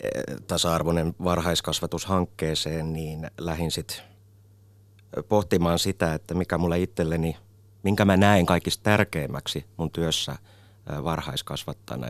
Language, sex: Finnish, male